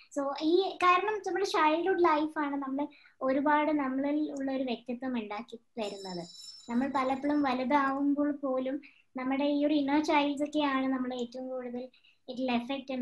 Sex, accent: male, native